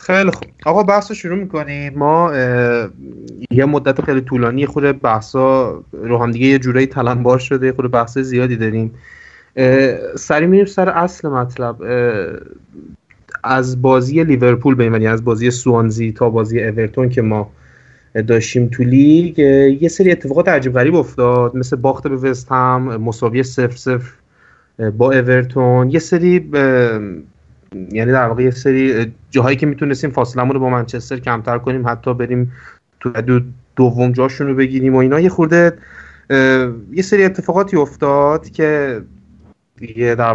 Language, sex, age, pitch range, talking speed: Persian, male, 30-49, 120-145 Hz, 135 wpm